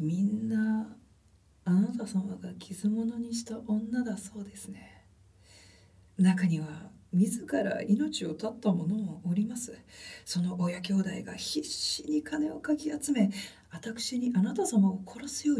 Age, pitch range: 40-59, 185-270 Hz